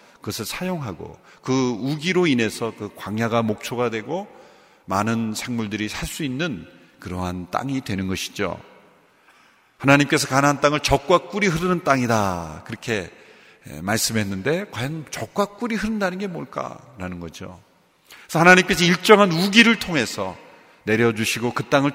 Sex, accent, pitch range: male, native, 115-180 Hz